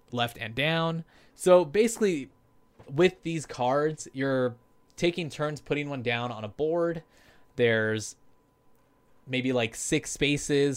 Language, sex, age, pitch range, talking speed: English, male, 20-39, 115-150 Hz, 125 wpm